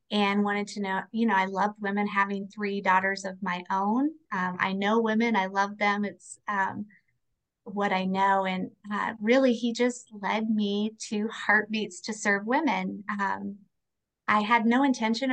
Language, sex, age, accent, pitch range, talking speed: English, female, 30-49, American, 195-220 Hz, 170 wpm